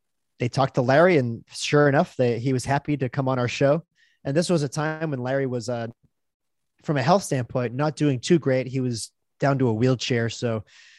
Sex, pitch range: male, 115-140 Hz